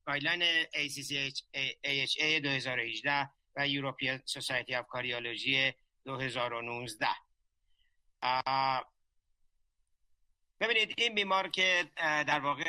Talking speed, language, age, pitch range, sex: 85 wpm, Persian, 60-79, 135-170 Hz, male